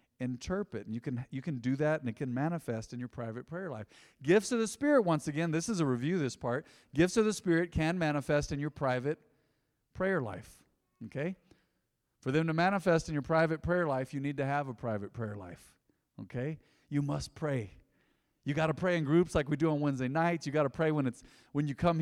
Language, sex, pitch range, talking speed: English, male, 130-165 Hz, 225 wpm